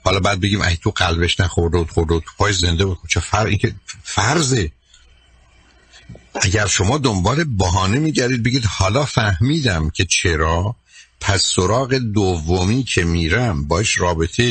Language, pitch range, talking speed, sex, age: Persian, 85-110 Hz, 140 wpm, male, 60-79